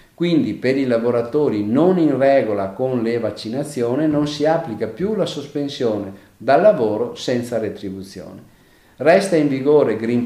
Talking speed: 140 wpm